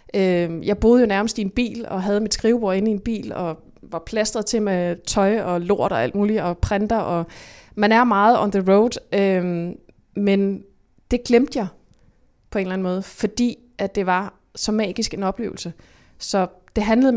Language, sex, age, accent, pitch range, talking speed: Danish, female, 20-39, native, 195-235 Hz, 195 wpm